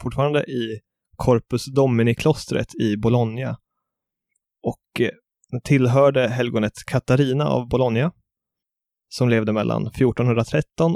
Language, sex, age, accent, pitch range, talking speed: English, male, 20-39, Swedish, 115-140 Hz, 95 wpm